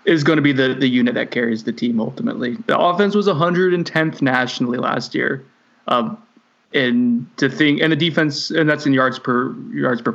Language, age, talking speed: English, 20-39, 195 wpm